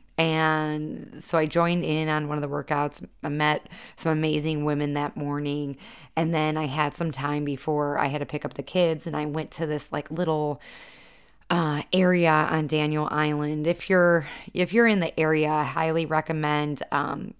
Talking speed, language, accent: 185 wpm, English, American